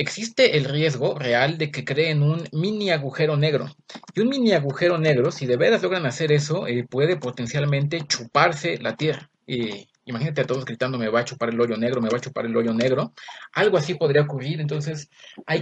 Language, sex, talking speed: Spanish, male, 205 wpm